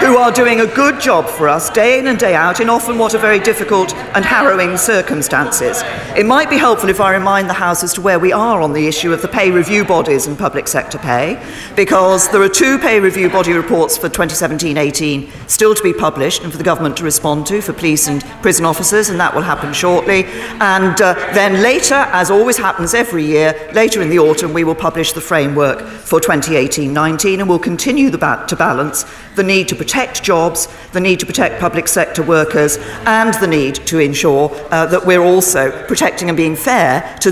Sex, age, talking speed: female, 40-59, 210 wpm